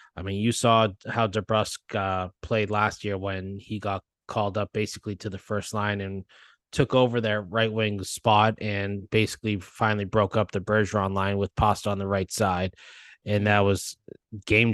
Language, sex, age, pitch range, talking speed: English, male, 20-39, 100-120 Hz, 185 wpm